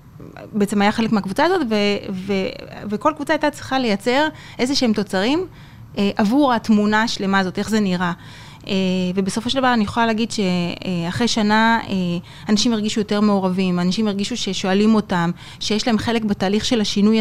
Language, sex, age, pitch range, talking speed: Hebrew, female, 20-39, 190-235 Hz, 170 wpm